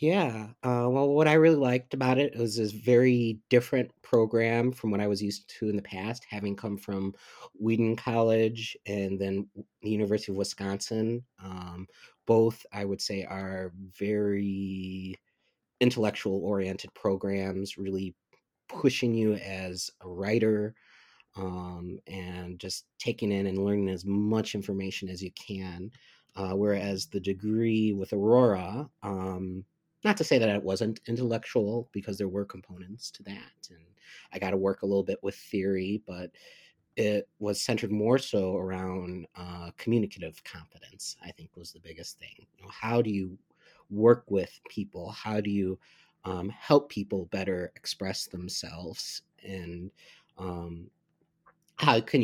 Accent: American